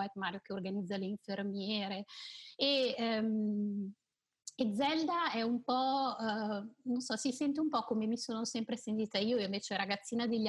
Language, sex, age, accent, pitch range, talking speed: Italian, female, 30-49, native, 200-230 Hz, 160 wpm